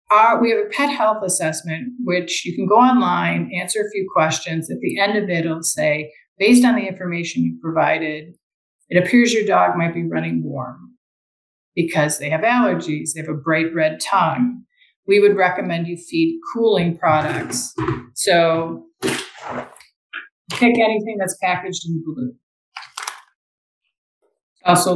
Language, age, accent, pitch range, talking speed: English, 50-69, American, 160-220 Hz, 145 wpm